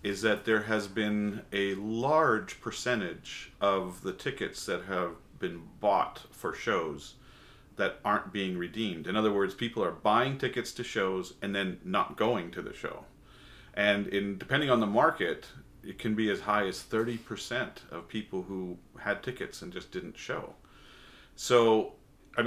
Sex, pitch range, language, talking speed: male, 95-115 Hz, English, 165 wpm